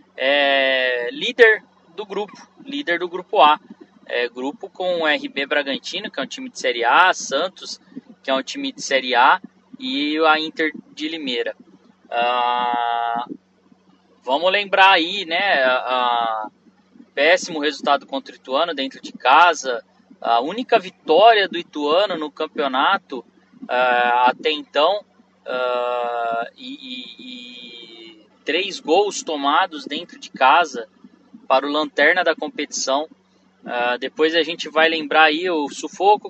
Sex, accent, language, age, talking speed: male, Brazilian, Portuguese, 20-39, 135 wpm